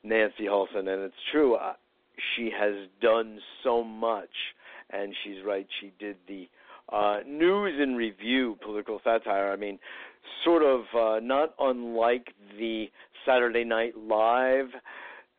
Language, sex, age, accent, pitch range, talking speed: English, male, 50-69, American, 100-120 Hz, 135 wpm